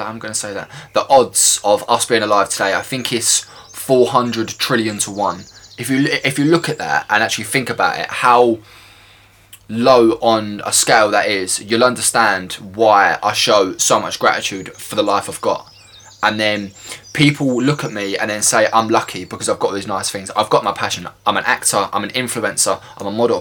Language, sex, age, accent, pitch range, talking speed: English, male, 20-39, British, 100-125 Hz, 205 wpm